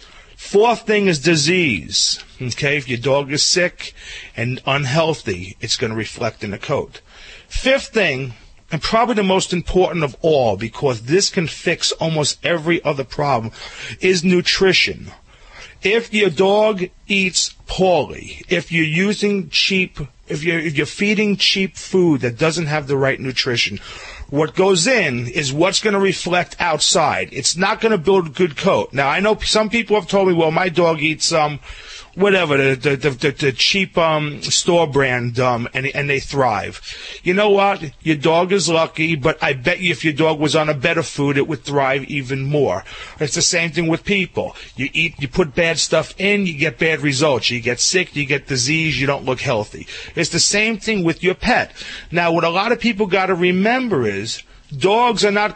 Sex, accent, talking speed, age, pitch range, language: male, American, 185 wpm, 40-59, 140-190 Hz, English